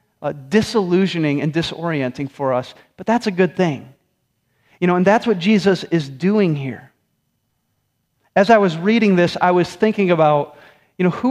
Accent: American